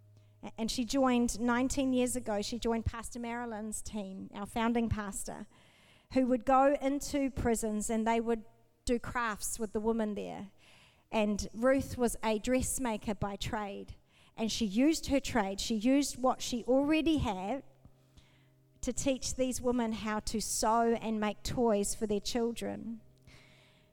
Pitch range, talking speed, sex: 195-260 Hz, 150 wpm, female